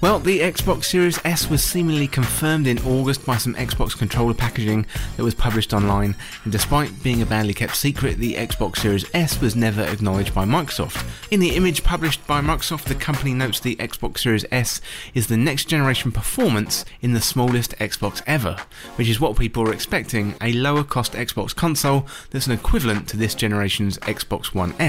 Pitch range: 110-150 Hz